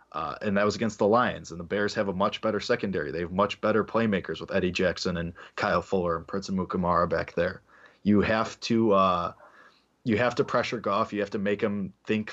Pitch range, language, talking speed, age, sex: 100-125 Hz, English, 225 wpm, 20-39, male